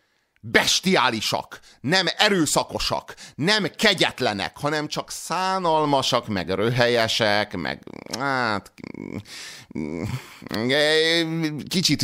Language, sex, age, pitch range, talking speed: Hungarian, male, 30-49, 115-160 Hz, 60 wpm